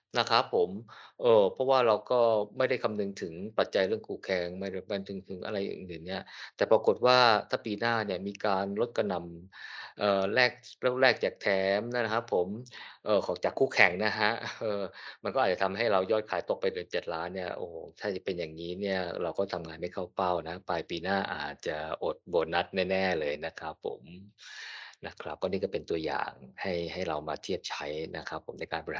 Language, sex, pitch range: Thai, male, 95-125 Hz